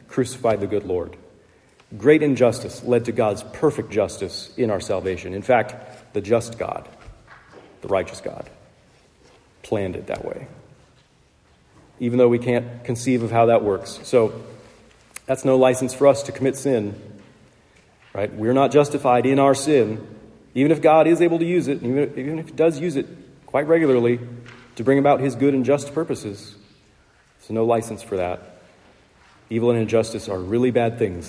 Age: 40-59